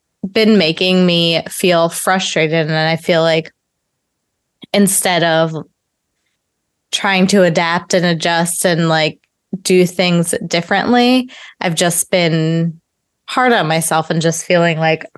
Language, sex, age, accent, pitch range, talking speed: English, female, 20-39, American, 160-195 Hz, 125 wpm